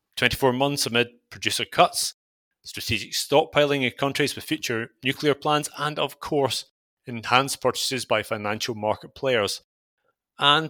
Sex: male